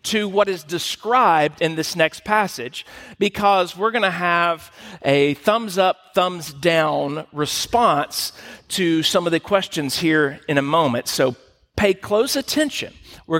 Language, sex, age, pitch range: English, male, 50-69, 150-200 Hz